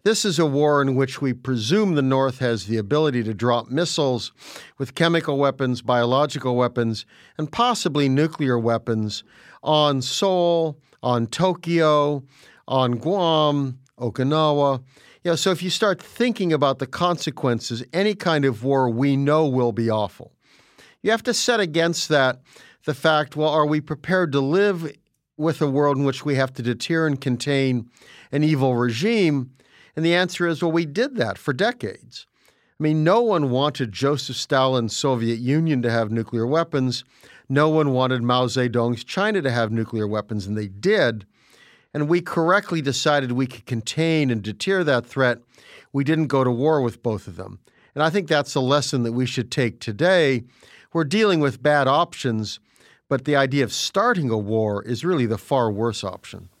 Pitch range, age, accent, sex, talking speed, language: 120-160 Hz, 50-69, American, male, 170 wpm, English